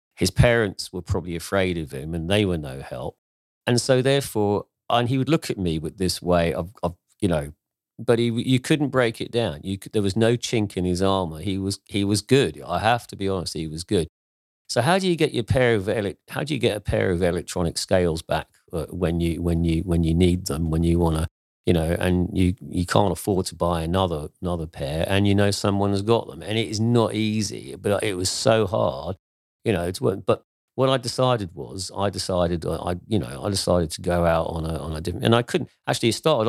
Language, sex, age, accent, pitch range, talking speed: English, male, 40-59, British, 85-105 Hz, 235 wpm